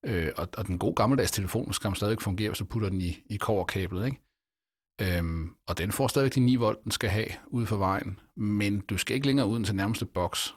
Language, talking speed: Danish, 215 wpm